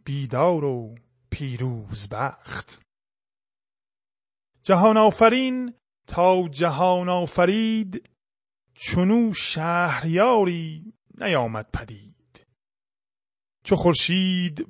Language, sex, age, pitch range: Persian, male, 30-49, 140-175 Hz